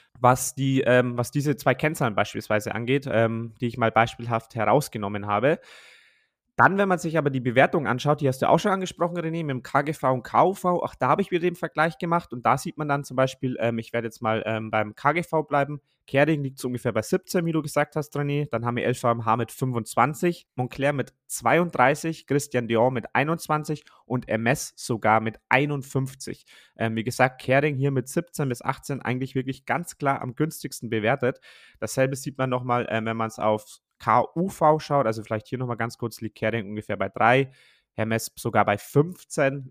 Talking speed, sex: 200 wpm, male